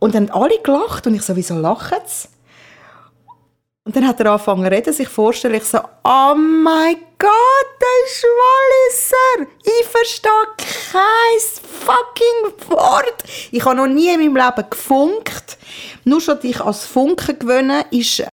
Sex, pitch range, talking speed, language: female, 220-285 Hz, 155 wpm, German